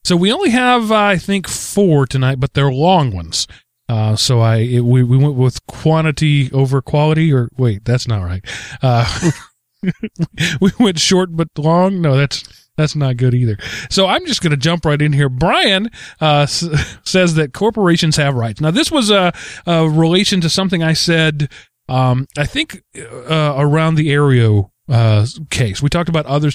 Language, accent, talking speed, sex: English, American, 180 wpm, male